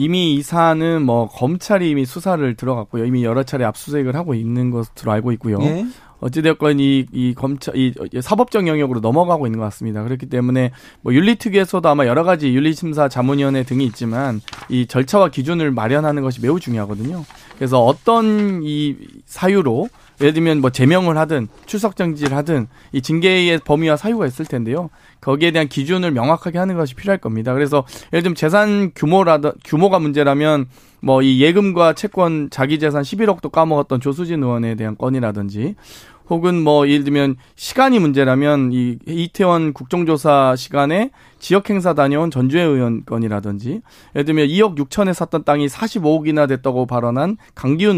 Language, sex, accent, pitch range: Korean, male, native, 130-175 Hz